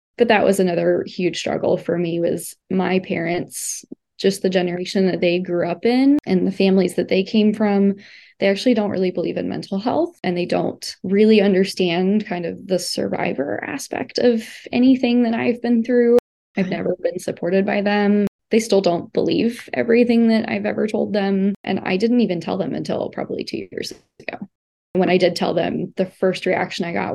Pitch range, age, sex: 180-210 Hz, 20-39, female